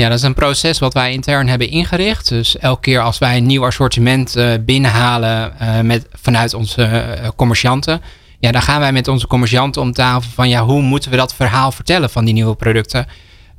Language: Dutch